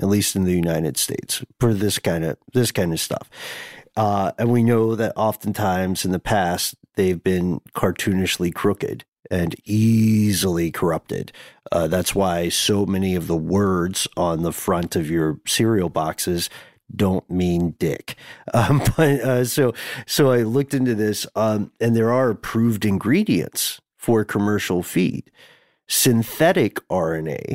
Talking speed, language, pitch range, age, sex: 150 wpm, English, 95-115 Hz, 40-59, male